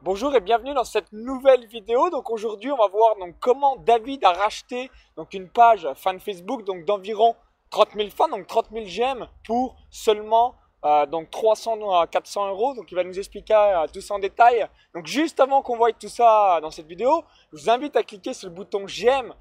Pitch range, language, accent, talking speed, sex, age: 180-235 Hz, French, French, 210 wpm, male, 20-39